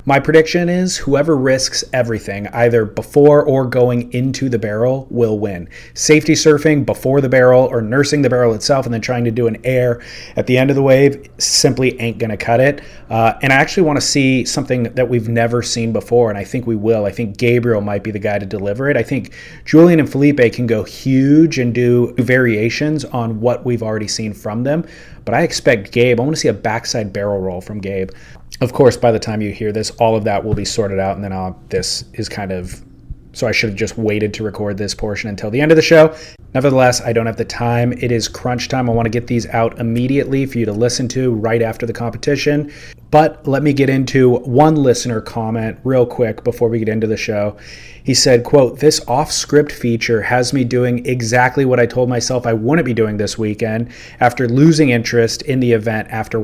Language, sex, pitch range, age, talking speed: English, male, 110-130 Hz, 30-49, 220 wpm